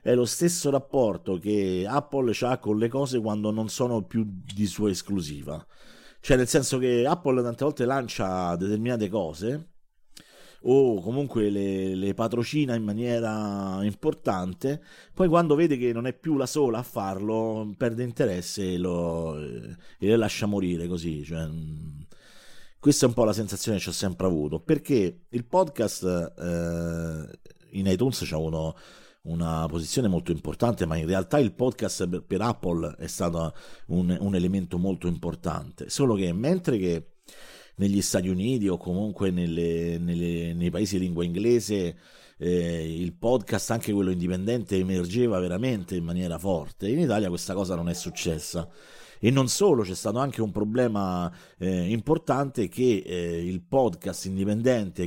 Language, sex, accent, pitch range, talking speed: Italian, male, native, 90-120 Hz, 150 wpm